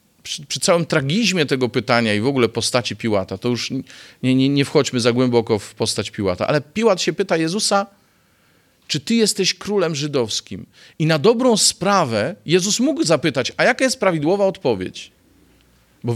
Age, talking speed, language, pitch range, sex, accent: 40-59, 165 wpm, Polish, 115-175 Hz, male, native